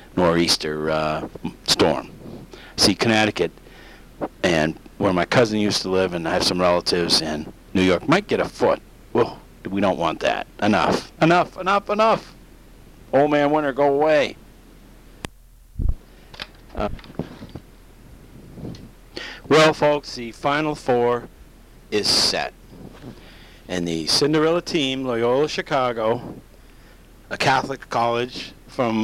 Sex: male